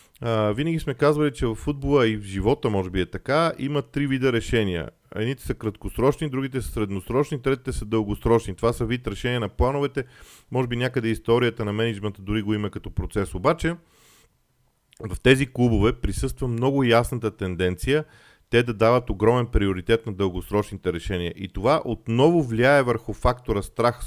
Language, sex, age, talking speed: Bulgarian, male, 40-59, 165 wpm